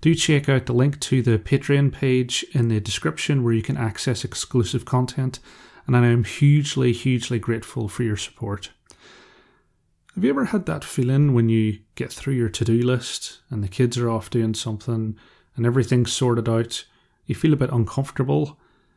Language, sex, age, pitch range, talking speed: English, male, 30-49, 115-135 Hz, 175 wpm